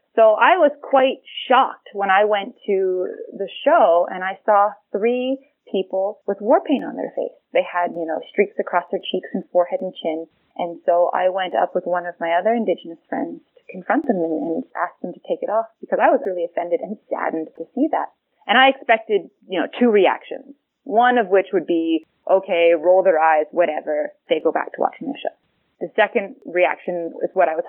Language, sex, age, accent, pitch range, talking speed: English, female, 20-39, American, 170-220 Hz, 210 wpm